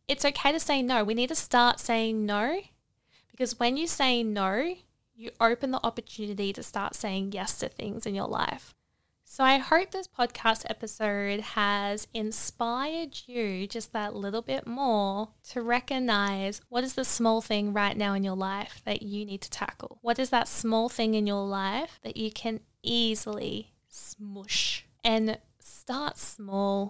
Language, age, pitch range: English, 10-29, 205-240 Hz